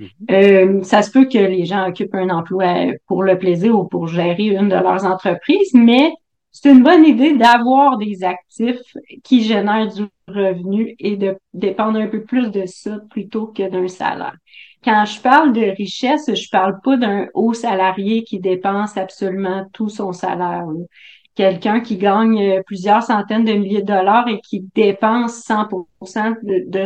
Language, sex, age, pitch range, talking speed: French, female, 40-59, 190-225 Hz, 170 wpm